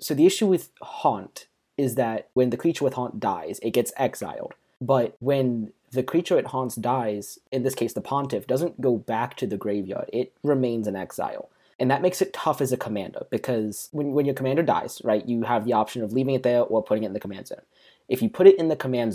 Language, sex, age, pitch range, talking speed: English, male, 20-39, 115-140 Hz, 235 wpm